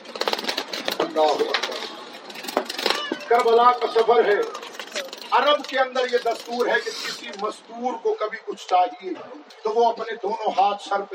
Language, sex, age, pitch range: Urdu, male, 50-69, 235-270 Hz